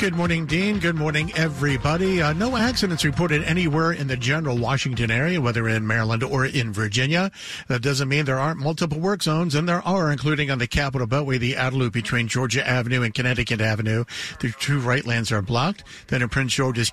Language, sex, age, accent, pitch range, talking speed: English, male, 50-69, American, 115-145 Hz, 195 wpm